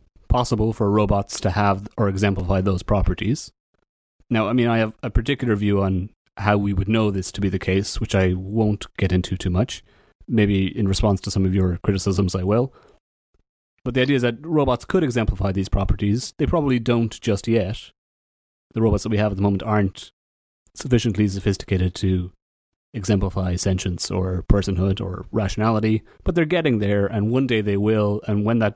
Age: 30-49